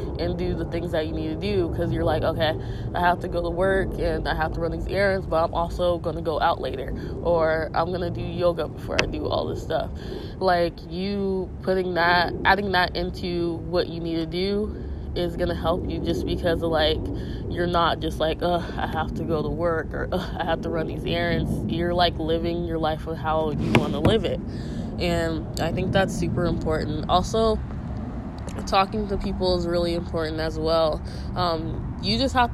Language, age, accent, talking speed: English, 20-39, American, 210 wpm